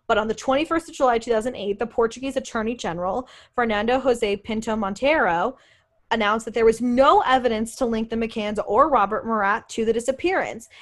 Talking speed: 170 wpm